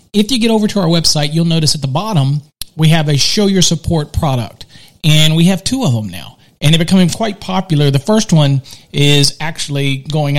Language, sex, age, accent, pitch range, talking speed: English, male, 40-59, American, 135-175 Hz, 215 wpm